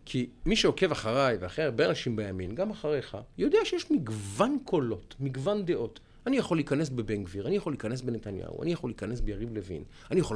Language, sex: Hebrew, male